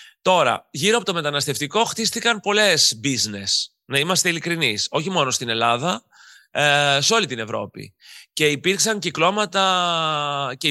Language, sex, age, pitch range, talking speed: Greek, male, 30-49, 125-180 Hz, 135 wpm